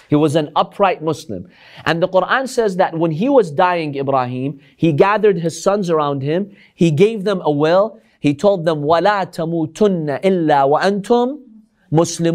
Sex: male